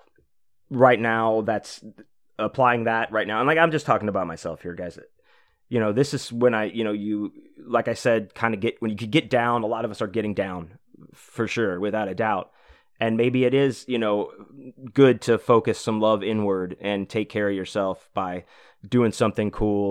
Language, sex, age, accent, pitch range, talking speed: English, male, 30-49, American, 100-115 Hz, 210 wpm